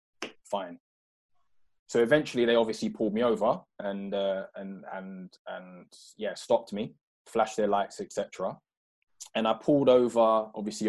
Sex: male